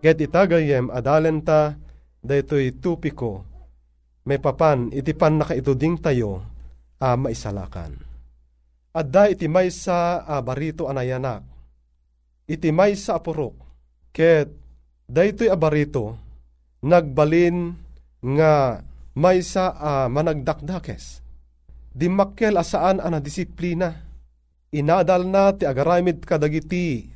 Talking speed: 90 wpm